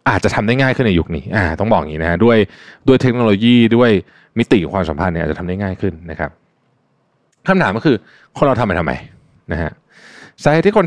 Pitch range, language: 90-125 Hz, Thai